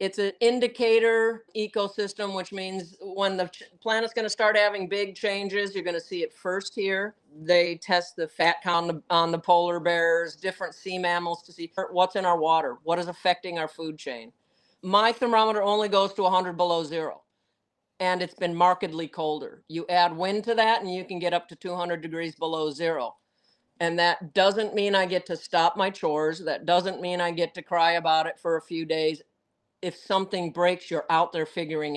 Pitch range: 165-200 Hz